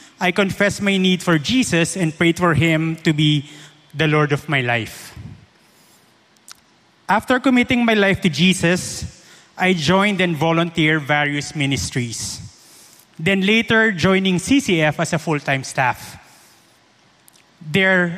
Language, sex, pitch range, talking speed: English, male, 150-195 Hz, 125 wpm